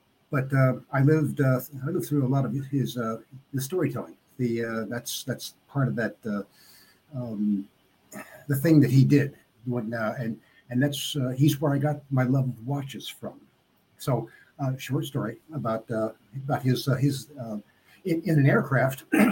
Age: 60-79